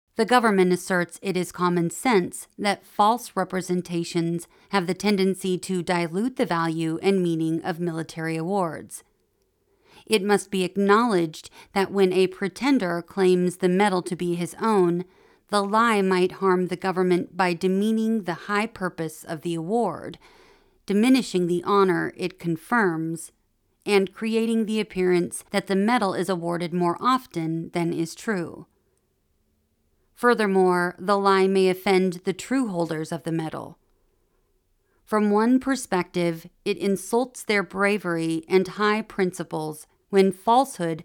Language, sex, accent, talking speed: English, female, American, 135 wpm